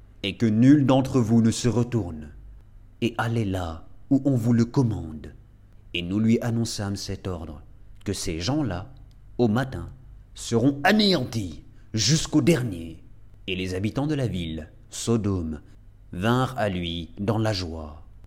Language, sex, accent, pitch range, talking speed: French, male, French, 100-130 Hz, 150 wpm